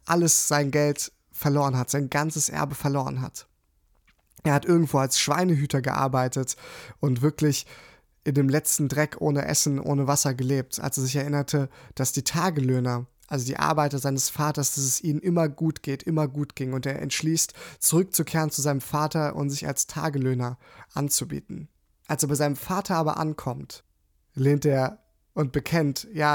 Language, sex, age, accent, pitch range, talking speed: German, male, 20-39, German, 130-150 Hz, 165 wpm